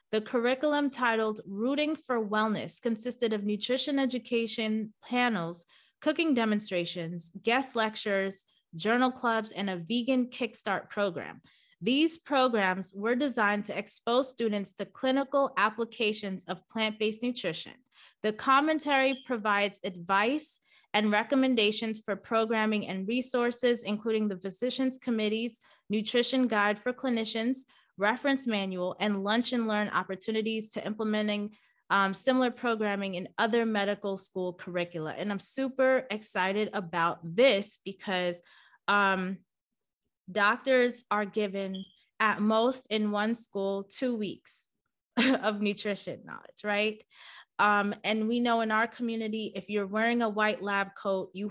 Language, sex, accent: English, female, American